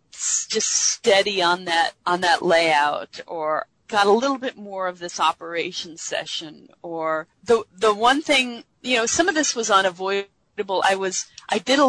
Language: English